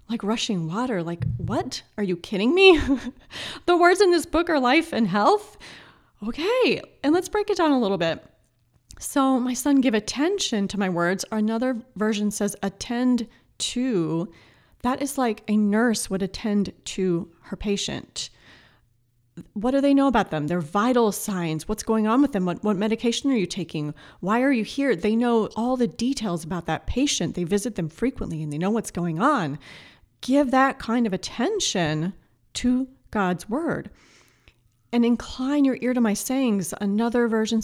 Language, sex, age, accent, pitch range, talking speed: English, female, 30-49, American, 190-255 Hz, 175 wpm